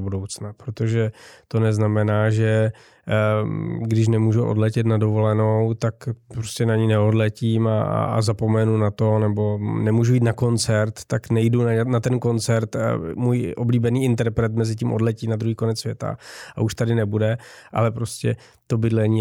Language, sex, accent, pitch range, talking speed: Czech, male, native, 110-115 Hz, 155 wpm